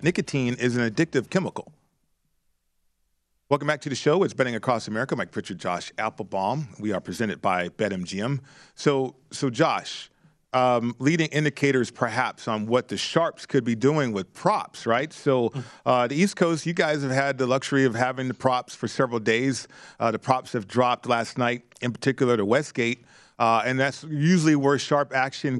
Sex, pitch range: male, 125-150 Hz